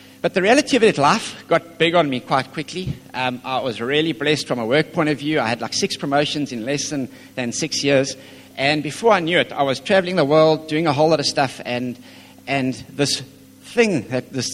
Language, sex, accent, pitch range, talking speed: English, male, Danish, 125-150 Hz, 230 wpm